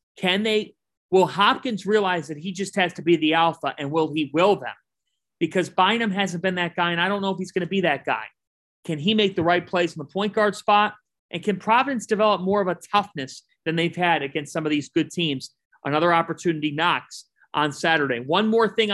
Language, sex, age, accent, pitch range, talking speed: English, male, 40-59, American, 150-185 Hz, 225 wpm